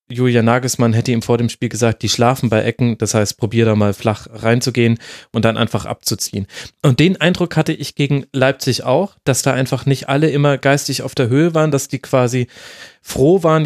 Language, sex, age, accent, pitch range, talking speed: German, male, 30-49, German, 125-155 Hz, 205 wpm